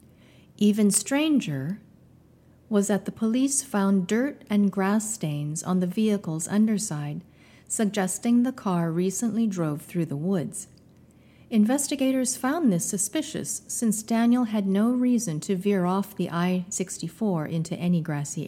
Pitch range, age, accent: 170-220 Hz, 50-69, American